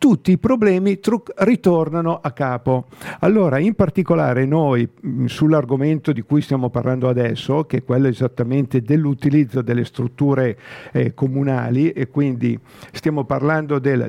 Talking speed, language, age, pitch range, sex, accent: 130 wpm, Italian, 50-69, 130-160 Hz, male, native